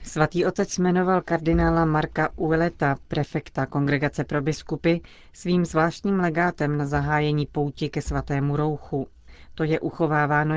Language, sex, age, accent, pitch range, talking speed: Czech, female, 40-59, native, 145-160 Hz, 125 wpm